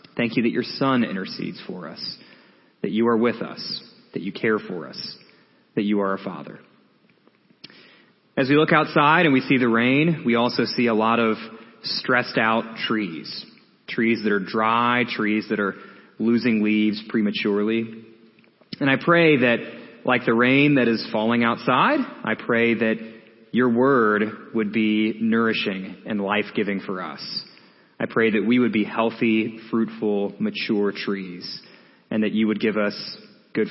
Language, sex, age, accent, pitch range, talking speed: English, male, 30-49, American, 105-120 Hz, 160 wpm